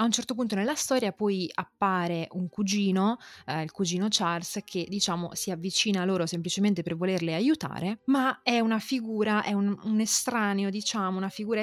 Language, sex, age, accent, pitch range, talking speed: Italian, female, 20-39, native, 180-230 Hz, 180 wpm